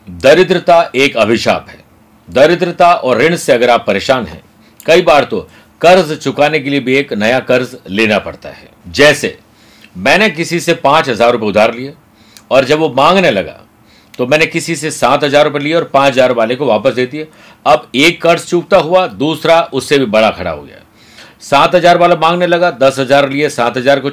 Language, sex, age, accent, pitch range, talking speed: Hindi, male, 50-69, native, 110-160 Hz, 190 wpm